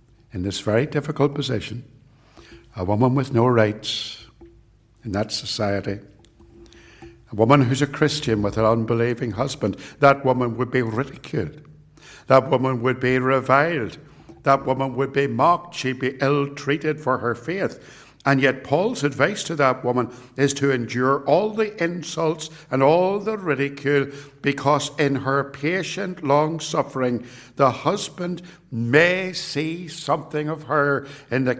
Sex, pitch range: male, 120-150 Hz